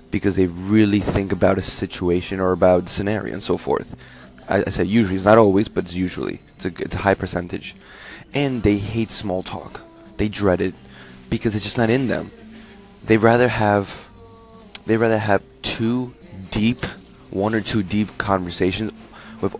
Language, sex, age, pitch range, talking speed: English, male, 20-39, 95-110 Hz, 180 wpm